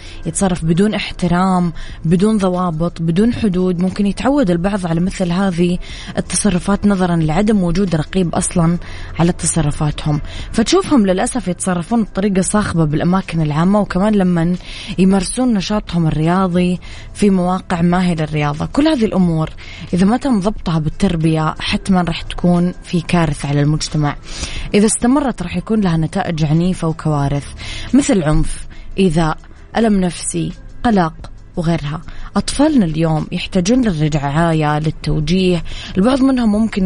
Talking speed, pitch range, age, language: 120 wpm, 155-195 Hz, 20-39, Arabic